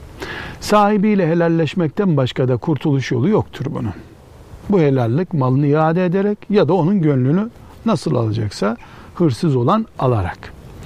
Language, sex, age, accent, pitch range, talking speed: Turkish, male, 60-79, native, 115-160 Hz, 120 wpm